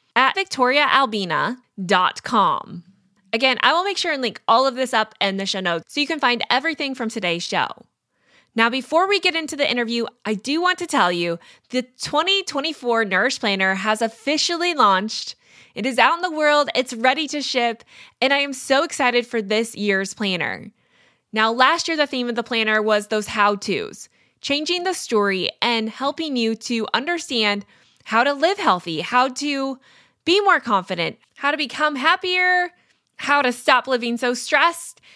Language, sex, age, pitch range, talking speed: English, female, 20-39, 215-295 Hz, 175 wpm